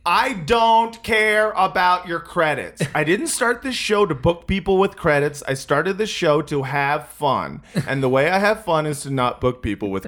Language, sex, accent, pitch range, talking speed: English, male, American, 140-225 Hz, 210 wpm